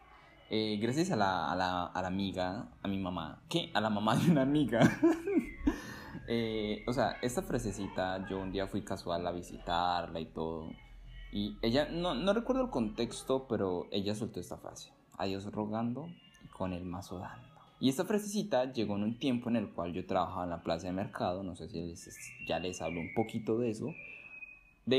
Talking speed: 195 wpm